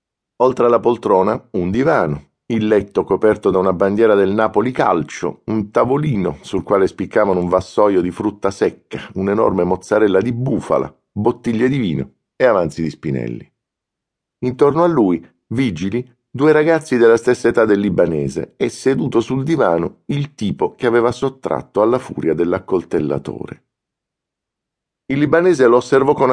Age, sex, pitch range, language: 50-69, male, 95-120 Hz, Italian